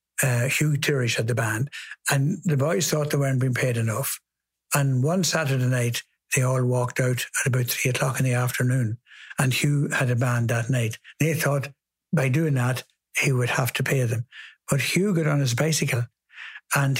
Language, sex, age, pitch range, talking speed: English, male, 60-79, 130-155 Hz, 195 wpm